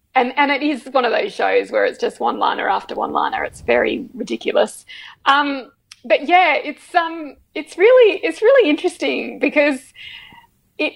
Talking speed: 170 wpm